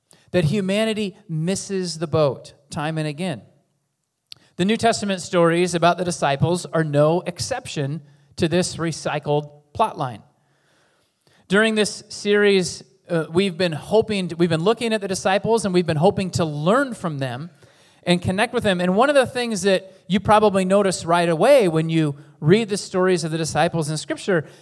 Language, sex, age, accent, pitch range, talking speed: English, male, 30-49, American, 155-195 Hz, 170 wpm